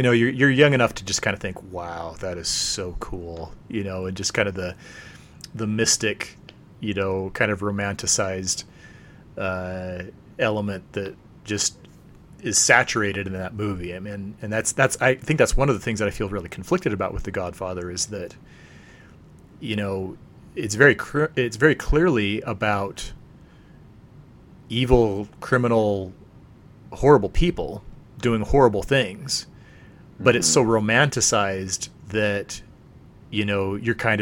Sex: male